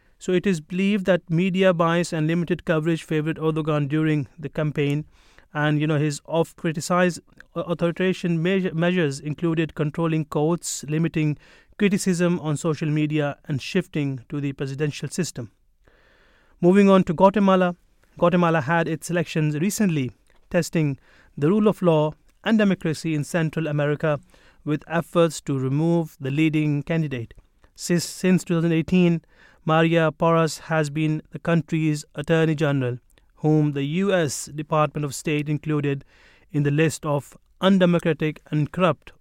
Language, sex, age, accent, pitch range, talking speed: English, male, 30-49, Indian, 150-175 Hz, 135 wpm